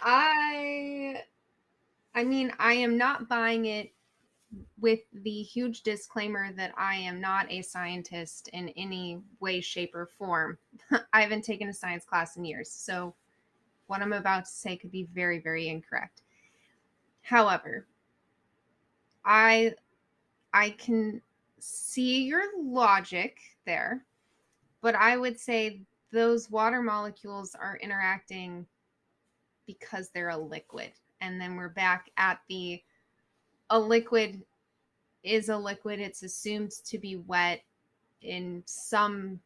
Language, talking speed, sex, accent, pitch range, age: English, 125 wpm, female, American, 180-225 Hz, 20-39